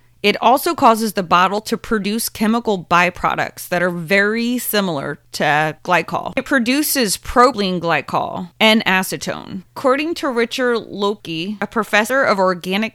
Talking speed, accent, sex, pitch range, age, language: 135 wpm, American, female, 180-235 Hz, 20-39, English